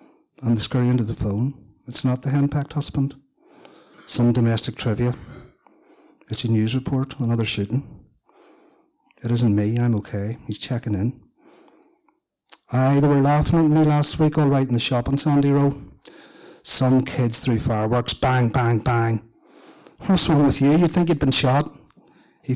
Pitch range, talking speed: 110-130 Hz, 165 wpm